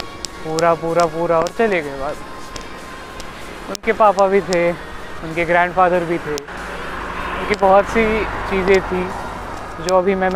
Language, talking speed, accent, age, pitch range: Marathi, 100 wpm, native, 20-39, 150-180 Hz